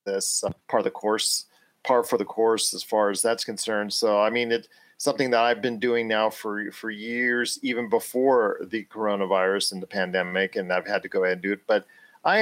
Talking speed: 220 wpm